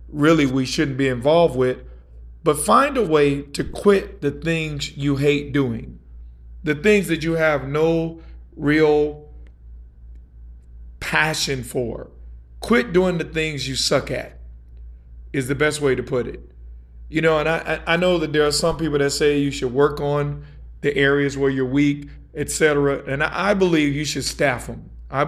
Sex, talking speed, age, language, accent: male, 170 wpm, 50-69, English, American